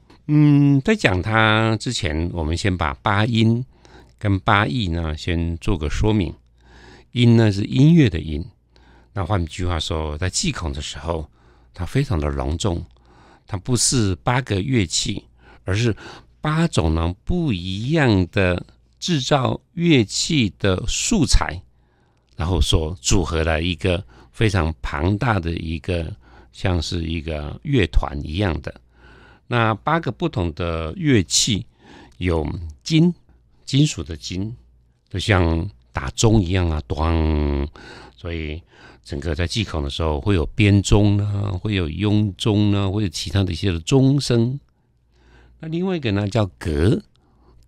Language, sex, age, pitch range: Chinese, male, 60-79, 80-110 Hz